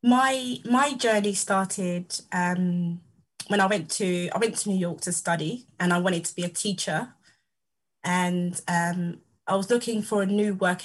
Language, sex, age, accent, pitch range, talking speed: English, female, 20-39, British, 175-205 Hz, 175 wpm